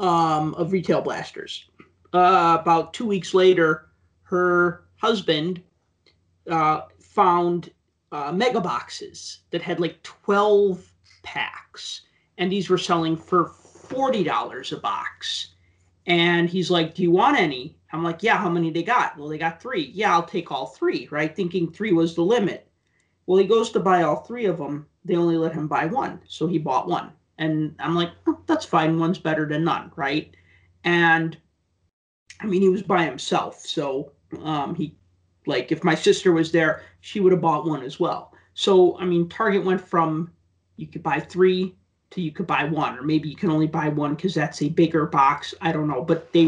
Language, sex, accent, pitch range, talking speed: English, male, American, 155-185 Hz, 185 wpm